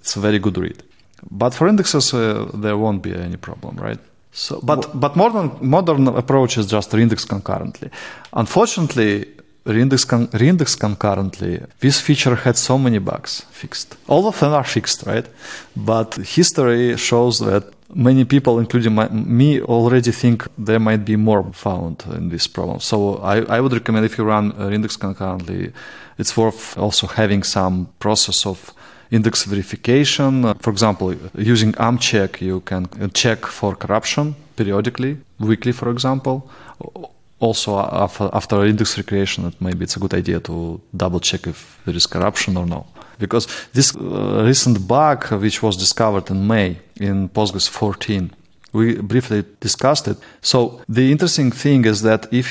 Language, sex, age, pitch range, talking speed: English, male, 30-49, 100-125 Hz, 155 wpm